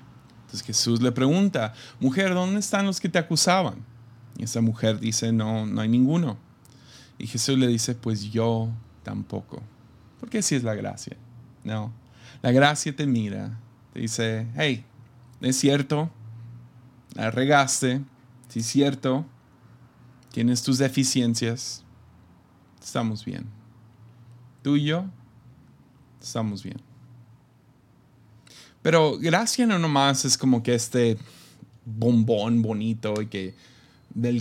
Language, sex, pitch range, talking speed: Spanish, male, 115-135 Hz, 120 wpm